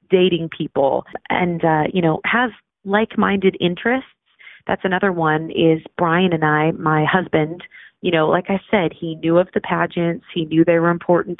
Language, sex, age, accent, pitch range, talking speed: English, female, 30-49, American, 165-200 Hz, 175 wpm